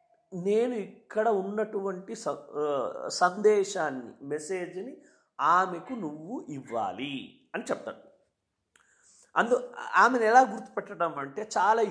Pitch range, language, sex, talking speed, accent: 160-235 Hz, Telugu, male, 85 wpm, native